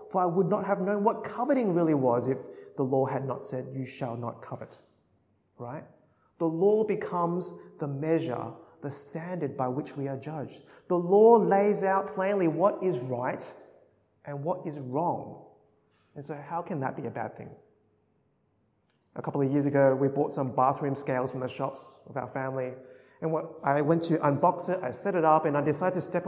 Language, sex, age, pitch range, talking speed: English, male, 30-49, 140-210 Hz, 195 wpm